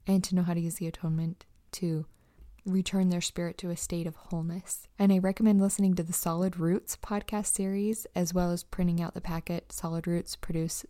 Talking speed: 205 wpm